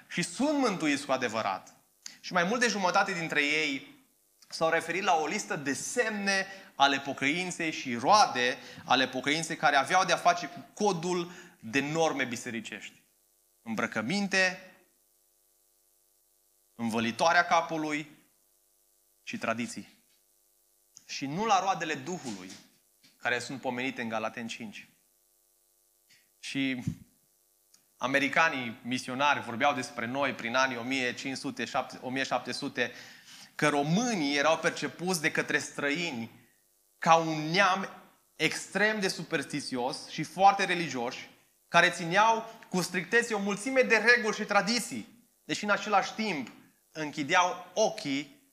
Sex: male